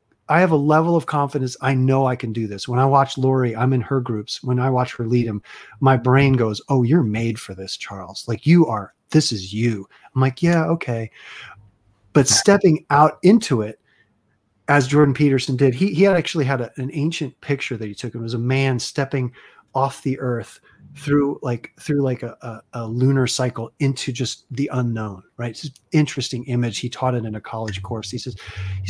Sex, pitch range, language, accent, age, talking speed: male, 115-140 Hz, English, American, 30-49, 210 wpm